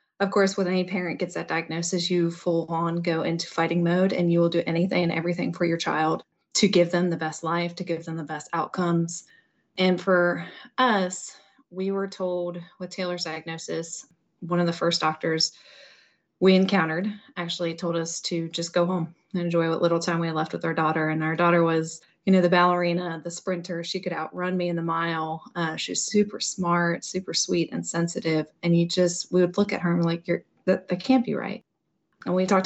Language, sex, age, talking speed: English, female, 20-39, 215 wpm